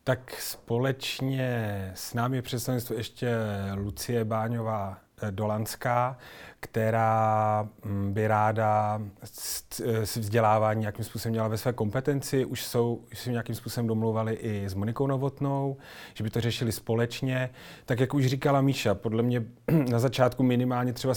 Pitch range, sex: 115-125 Hz, male